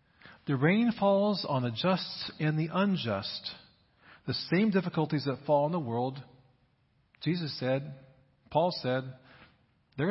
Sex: male